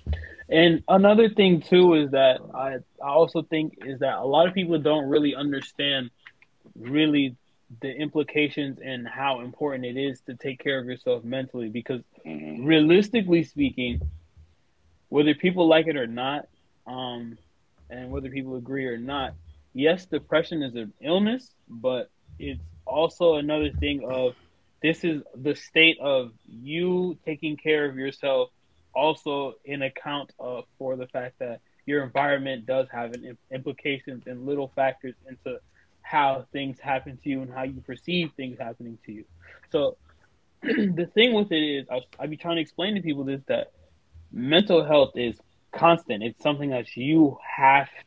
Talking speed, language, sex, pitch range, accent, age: 155 wpm, English, male, 125-155 Hz, American, 20-39